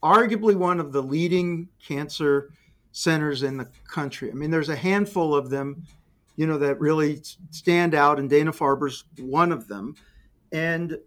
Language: English